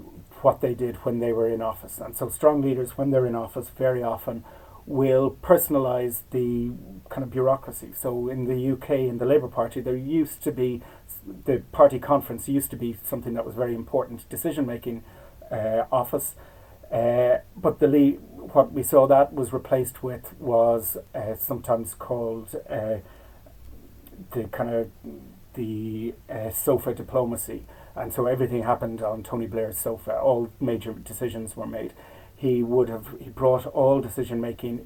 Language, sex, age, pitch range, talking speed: English, male, 40-59, 115-130 Hz, 160 wpm